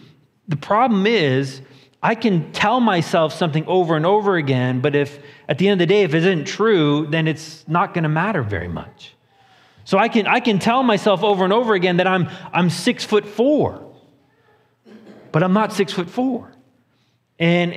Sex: male